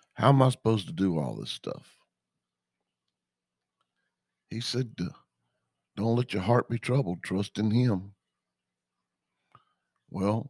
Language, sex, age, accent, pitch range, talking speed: English, male, 60-79, American, 80-110 Hz, 120 wpm